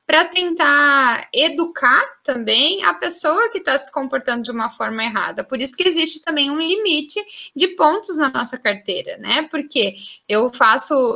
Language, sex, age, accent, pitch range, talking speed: Portuguese, female, 10-29, Brazilian, 230-310 Hz, 160 wpm